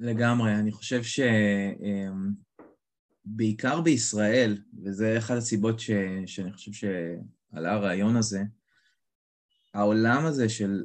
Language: Hebrew